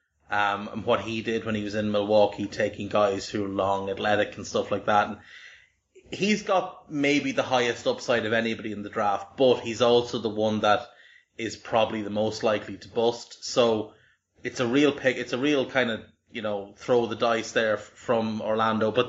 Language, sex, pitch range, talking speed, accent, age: English, male, 105-120 Hz, 205 wpm, Irish, 30-49